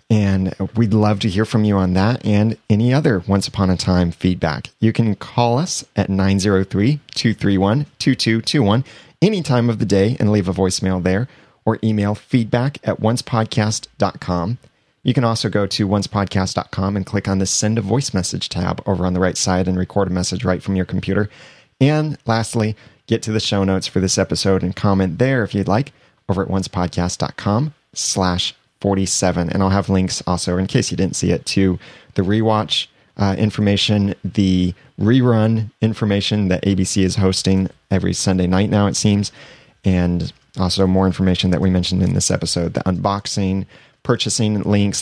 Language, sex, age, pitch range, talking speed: English, male, 30-49, 95-115 Hz, 175 wpm